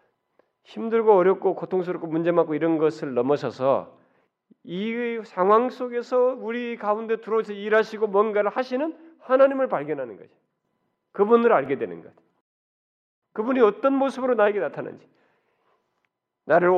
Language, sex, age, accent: Korean, male, 40-59, native